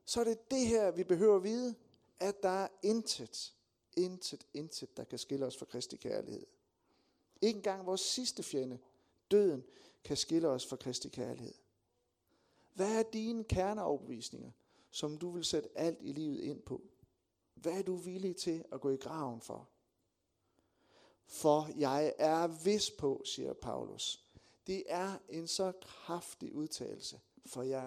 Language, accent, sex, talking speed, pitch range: Danish, native, male, 155 wpm, 145-210 Hz